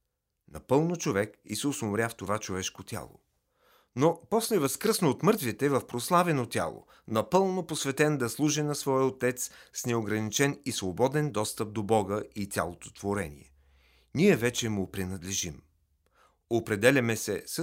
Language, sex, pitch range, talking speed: Bulgarian, male, 100-135 Hz, 135 wpm